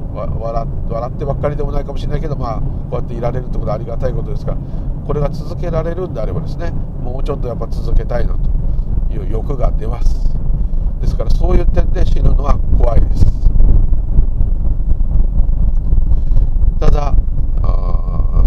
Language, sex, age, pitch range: Japanese, male, 50-69, 85-110 Hz